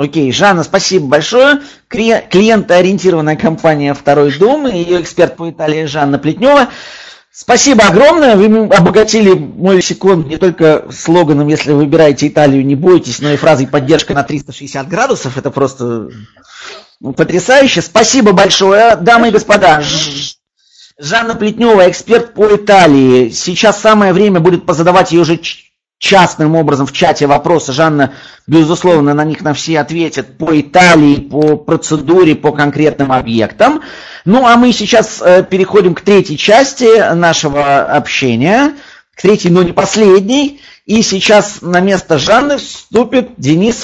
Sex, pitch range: male, 150-215 Hz